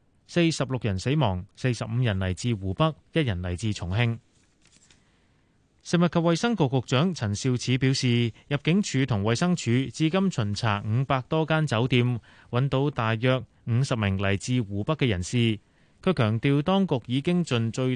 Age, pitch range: 30-49, 110-145 Hz